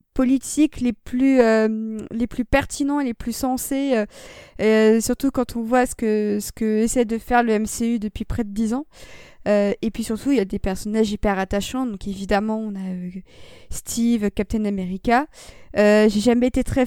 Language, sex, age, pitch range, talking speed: French, female, 20-39, 210-250 Hz, 190 wpm